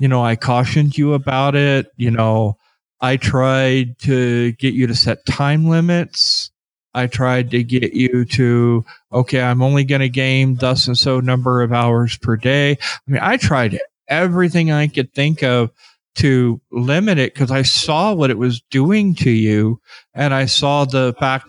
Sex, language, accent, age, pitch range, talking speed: male, English, American, 40-59, 125-150 Hz, 180 wpm